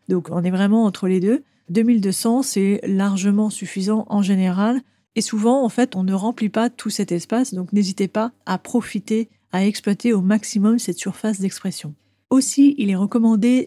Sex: female